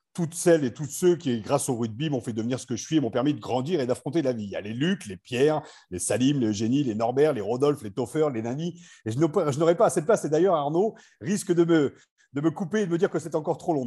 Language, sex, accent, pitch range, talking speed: French, male, French, 120-155 Hz, 300 wpm